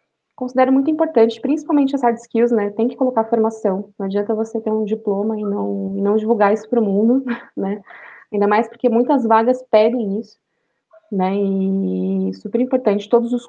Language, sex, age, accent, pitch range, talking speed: Portuguese, female, 20-39, Brazilian, 205-260 Hz, 180 wpm